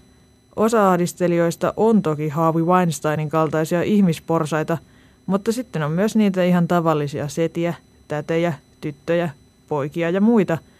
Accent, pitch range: native, 155-180 Hz